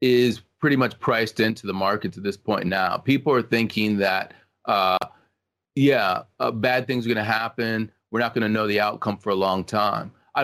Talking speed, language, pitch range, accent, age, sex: 205 wpm, English, 105-120 Hz, American, 30-49, male